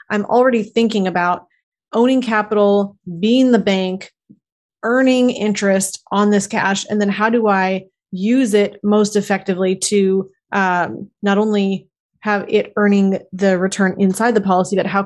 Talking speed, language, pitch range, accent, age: 150 wpm, English, 190-220 Hz, American, 30-49